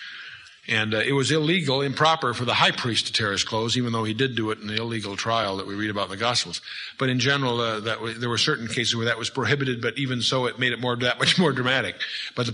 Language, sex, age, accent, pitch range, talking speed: English, male, 50-69, American, 110-155 Hz, 280 wpm